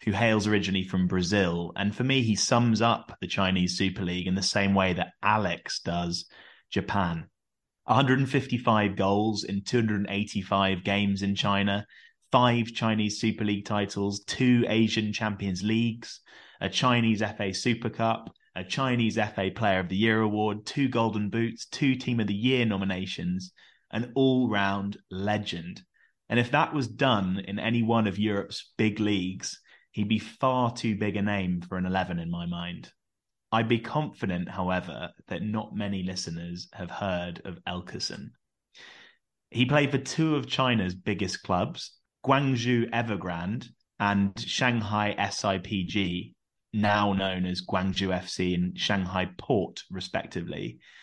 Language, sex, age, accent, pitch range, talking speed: English, male, 20-39, British, 95-115 Hz, 145 wpm